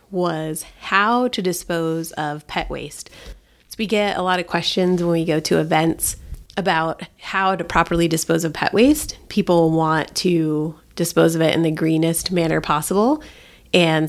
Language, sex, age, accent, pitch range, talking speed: English, female, 30-49, American, 155-180 Hz, 165 wpm